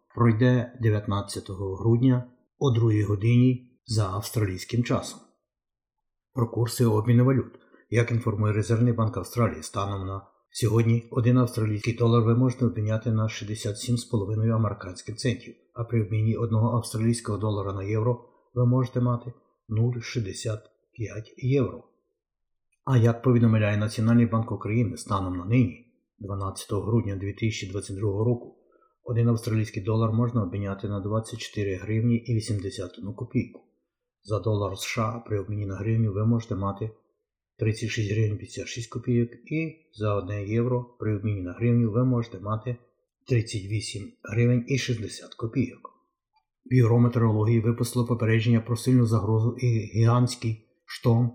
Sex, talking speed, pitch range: male, 125 wpm, 105-120 Hz